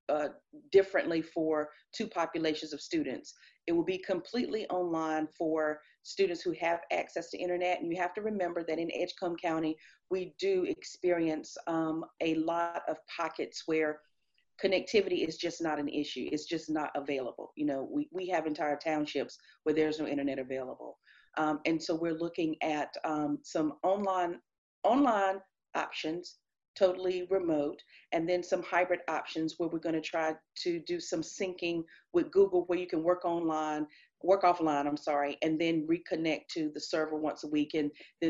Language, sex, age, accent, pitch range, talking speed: English, female, 40-59, American, 155-190 Hz, 170 wpm